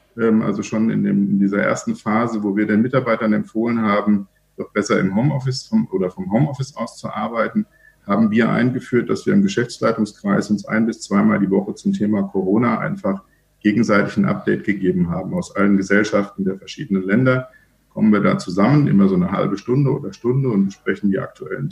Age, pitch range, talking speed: 50-69, 105-135 Hz, 180 wpm